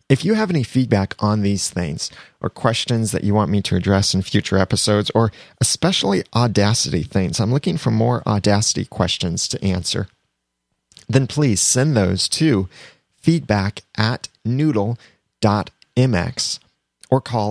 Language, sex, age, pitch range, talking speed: English, male, 30-49, 95-125 Hz, 140 wpm